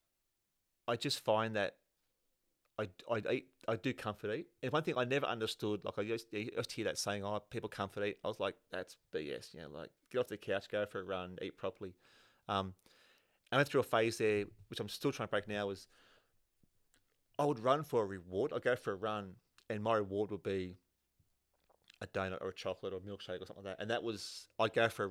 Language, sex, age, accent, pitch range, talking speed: English, male, 30-49, Australian, 95-115 Hz, 225 wpm